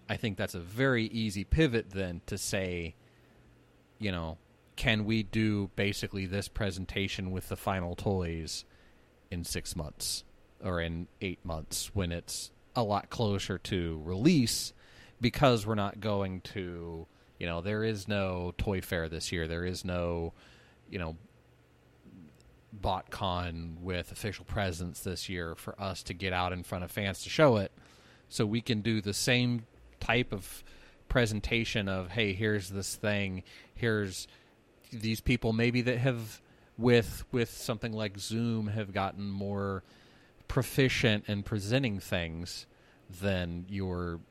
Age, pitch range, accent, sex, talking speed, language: 30-49, 90-115 Hz, American, male, 145 wpm, English